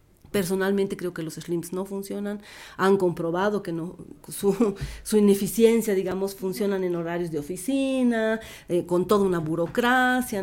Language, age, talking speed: Spanish, 40-59, 145 wpm